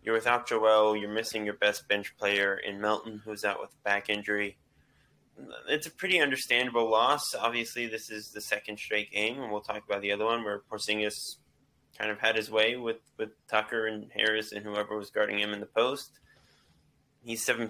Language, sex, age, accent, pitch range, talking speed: English, male, 20-39, American, 105-115 Hz, 195 wpm